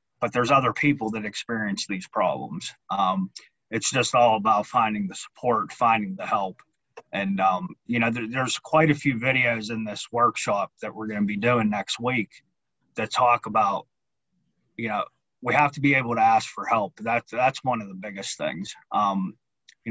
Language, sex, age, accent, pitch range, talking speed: English, male, 30-49, American, 110-140 Hz, 185 wpm